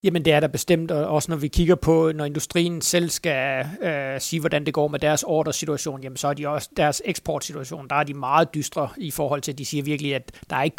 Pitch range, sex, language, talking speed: 150-175 Hz, male, Danish, 255 wpm